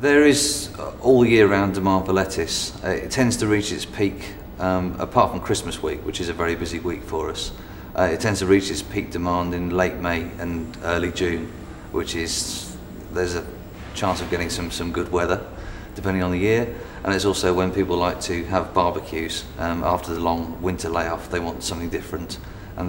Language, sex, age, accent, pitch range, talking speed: English, male, 30-49, British, 85-95 Hz, 205 wpm